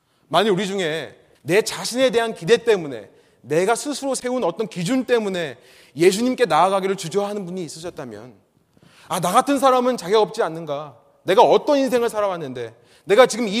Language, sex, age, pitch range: Korean, male, 30-49, 145-235 Hz